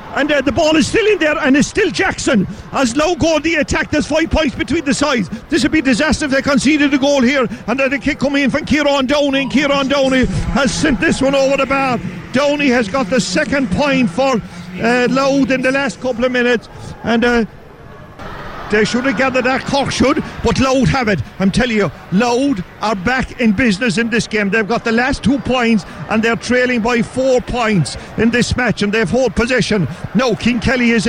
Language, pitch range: English, 225-270 Hz